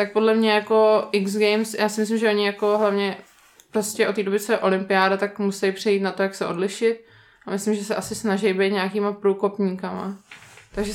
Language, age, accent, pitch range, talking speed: Czech, 20-39, native, 195-215 Hz, 210 wpm